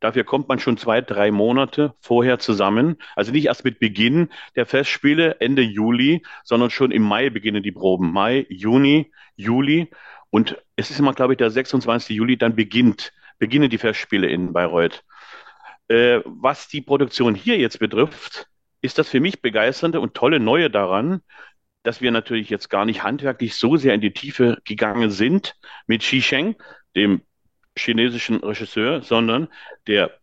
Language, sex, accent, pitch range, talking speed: German, male, German, 110-135 Hz, 160 wpm